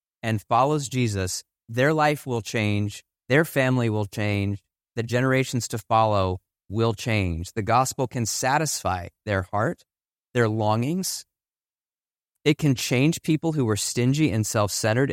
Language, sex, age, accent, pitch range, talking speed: English, male, 30-49, American, 100-125 Hz, 140 wpm